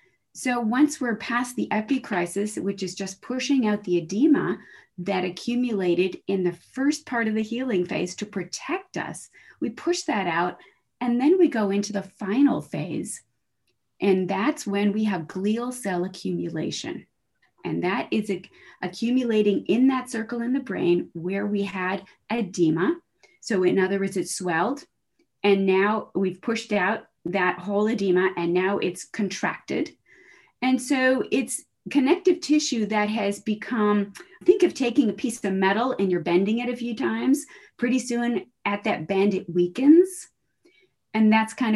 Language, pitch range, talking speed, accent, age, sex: English, 185-245 Hz, 160 wpm, American, 30-49, female